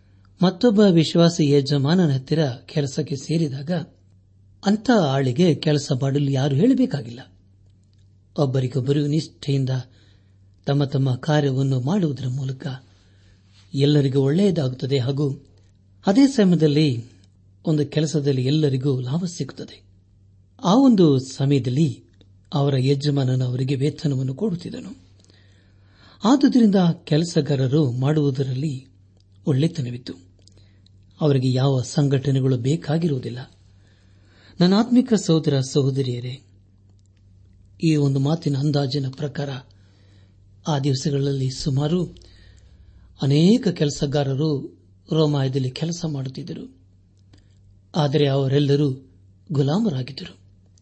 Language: Kannada